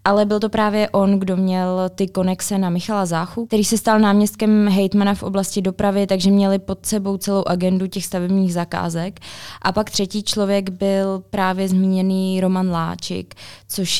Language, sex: Czech, female